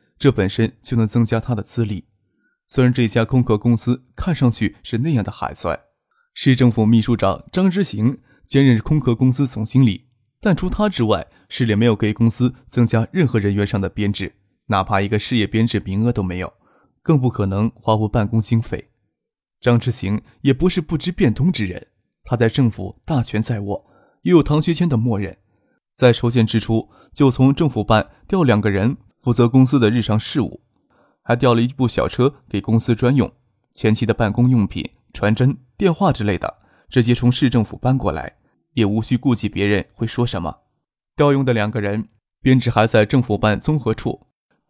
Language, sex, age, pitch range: Chinese, male, 20-39, 105-130 Hz